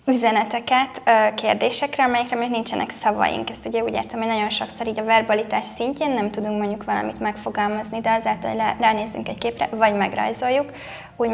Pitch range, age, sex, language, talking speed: 210-235 Hz, 10-29, female, Hungarian, 165 wpm